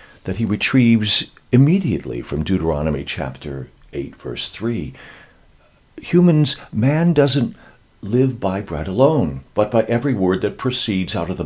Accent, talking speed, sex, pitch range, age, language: American, 135 wpm, male, 80-120 Hz, 60-79, English